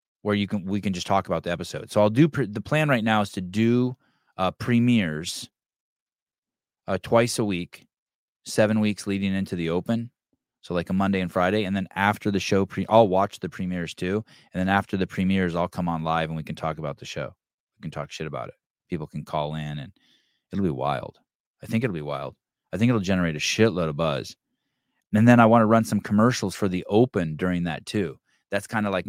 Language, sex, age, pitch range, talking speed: English, male, 20-39, 95-115 Hz, 230 wpm